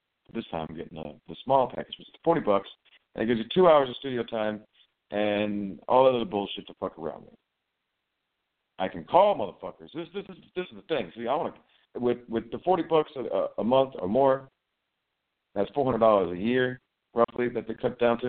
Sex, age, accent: male, 50-69, American